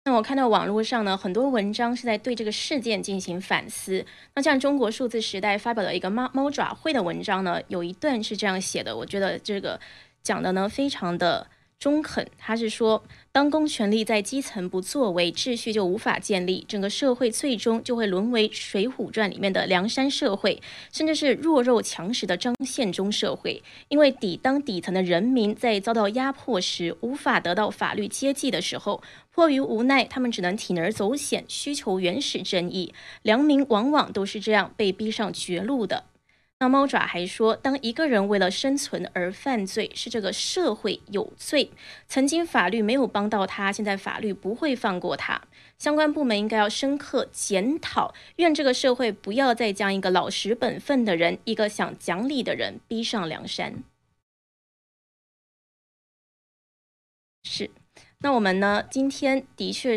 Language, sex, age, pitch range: Chinese, female, 20-39, 195-265 Hz